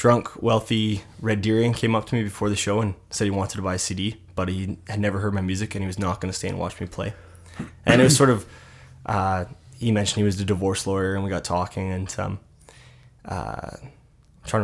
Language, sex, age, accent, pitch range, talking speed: English, male, 20-39, American, 95-105 Hz, 240 wpm